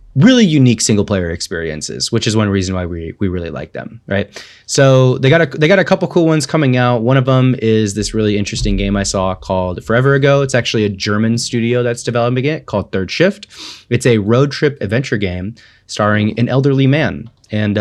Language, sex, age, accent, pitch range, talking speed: English, male, 20-39, American, 100-125 Hz, 210 wpm